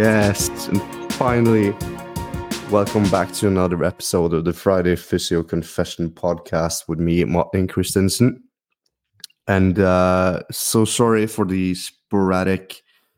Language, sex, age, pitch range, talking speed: English, male, 20-39, 90-110 Hz, 115 wpm